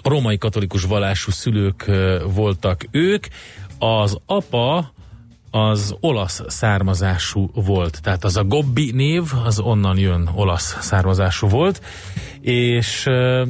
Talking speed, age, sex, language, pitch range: 105 wpm, 30-49, male, Hungarian, 100-115 Hz